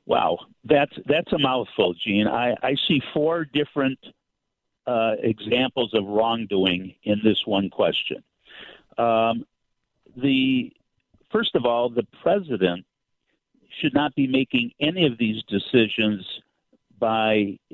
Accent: American